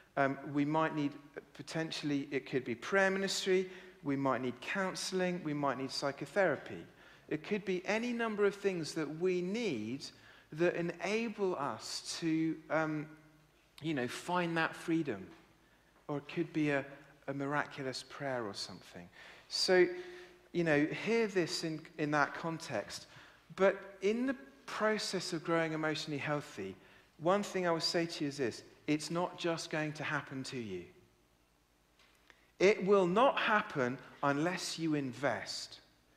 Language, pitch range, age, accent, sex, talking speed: English, 130-175 Hz, 50-69, British, male, 150 wpm